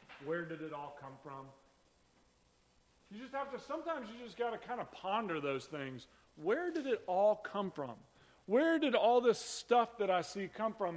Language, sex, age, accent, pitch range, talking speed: English, male, 40-59, American, 145-200 Hz, 195 wpm